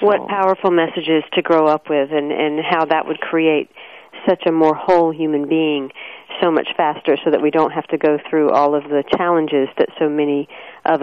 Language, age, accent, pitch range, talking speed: English, 50-69, American, 145-165 Hz, 205 wpm